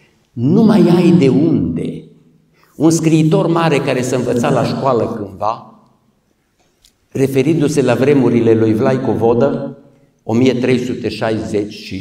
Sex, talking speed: male, 110 wpm